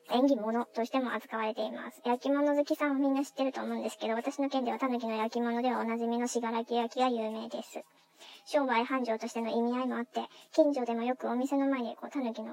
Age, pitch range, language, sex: 20-39, 230-275 Hz, Japanese, male